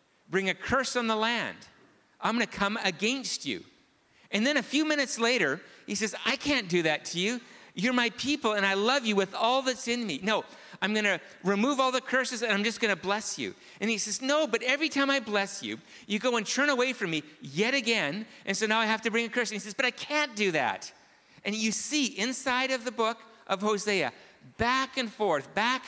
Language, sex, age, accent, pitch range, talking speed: English, male, 50-69, American, 180-245 Hz, 235 wpm